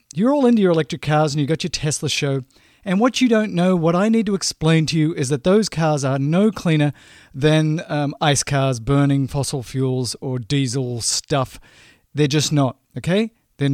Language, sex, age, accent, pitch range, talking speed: English, male, 40-59, Australian, 140-185 Hz, 200 wpm